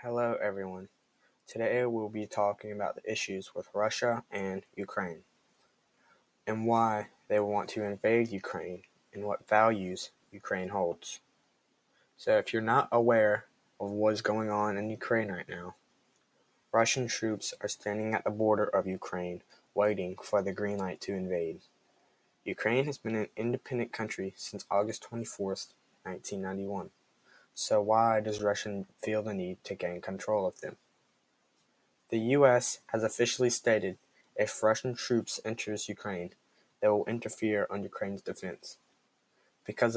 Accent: American